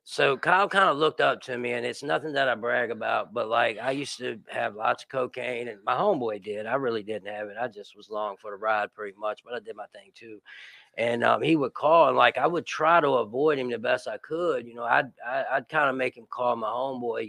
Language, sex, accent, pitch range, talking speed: English, male, American, 115-150 Hz, 265 wpm